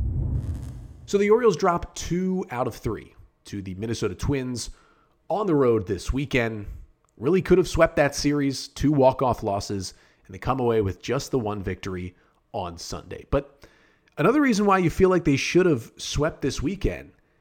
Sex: male